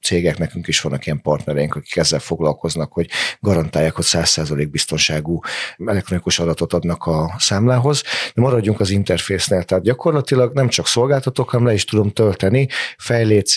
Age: 40-59